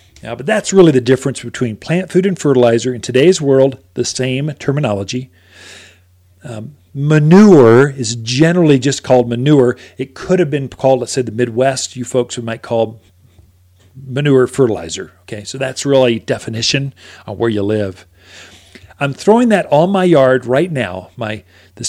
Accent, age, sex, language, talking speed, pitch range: American, 40-59, male, English, 160 wpm, 115-150 Hz